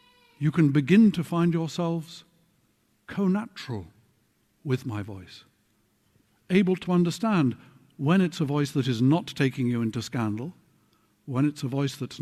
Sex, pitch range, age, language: male, 120-165 Hz, 60-79, English